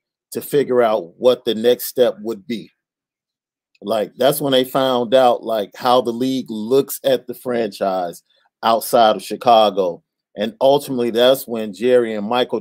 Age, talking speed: 40-59, 155 wpm